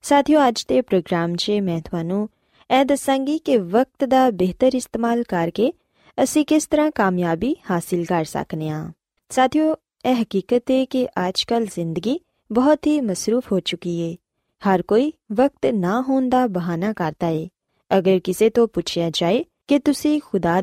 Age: 20-39